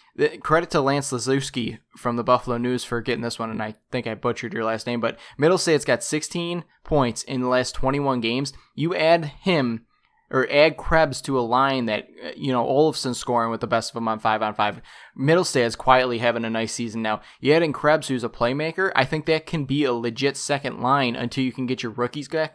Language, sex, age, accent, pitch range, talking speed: English, male, 20-39, American, 120-145 Hz, 220 wpm